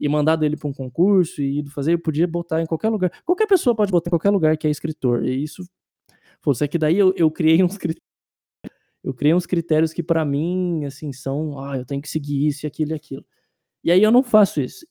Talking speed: 240 wpm